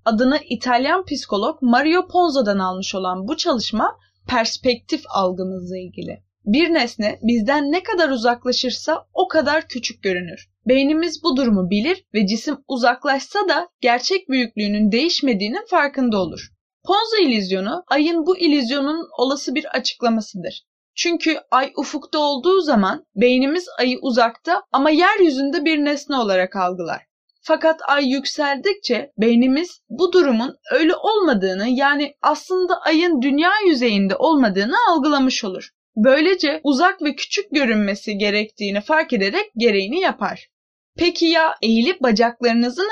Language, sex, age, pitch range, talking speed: Turkish, female, 20-39, 220-320 Hz, 120 wpm